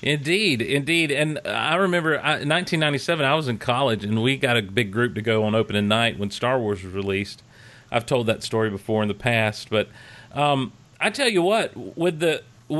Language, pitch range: English, 120-160 Hz